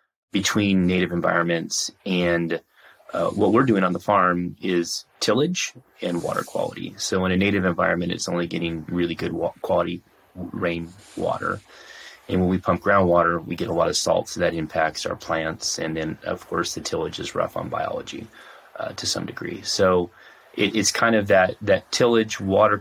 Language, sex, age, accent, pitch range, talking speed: English, male, 30-49, American, 85-95 Hz, 180 wpm